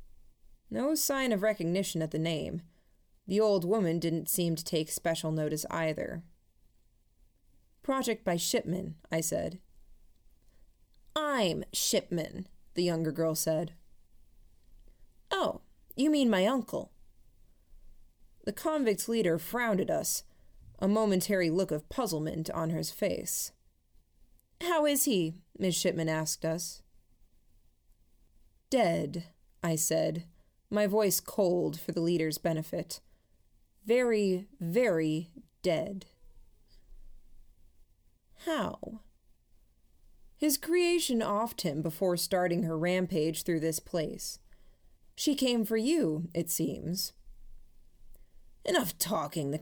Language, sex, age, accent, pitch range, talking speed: English, female, 20-39, American, 160-215 Hz, 105 wpm